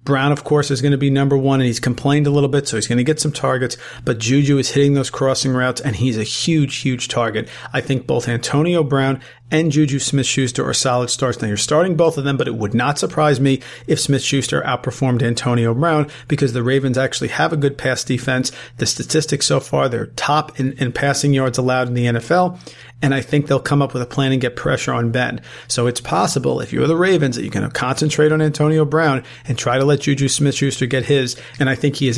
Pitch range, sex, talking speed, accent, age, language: 125-150 Hz, male, 240 wpm, American, 40-59, English